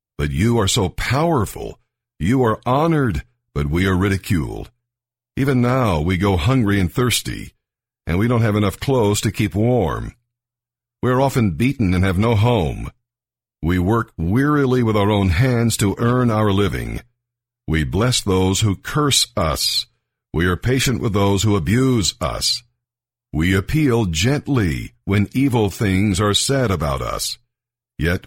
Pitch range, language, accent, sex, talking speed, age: 95-125 Hz, English, American, male, 155 wpm, 60-79